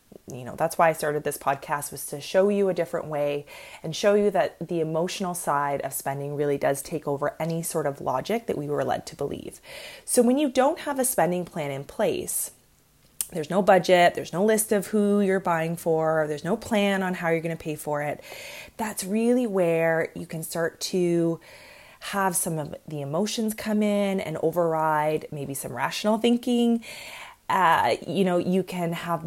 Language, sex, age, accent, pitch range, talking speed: English, female, 20-39, American, 160-205 Hz, 200 wpm